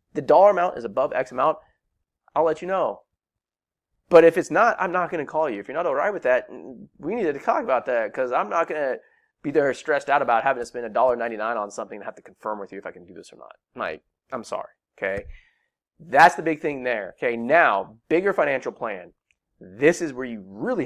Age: 30-49